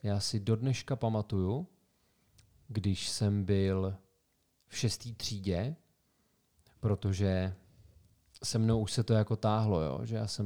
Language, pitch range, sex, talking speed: Czech, 95-110 Hz, male, 130 wpm